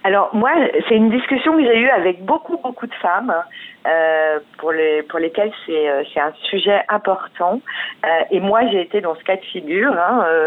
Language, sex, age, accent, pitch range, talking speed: French, female, 40-59, French, 180-250 Hz, 200 wpm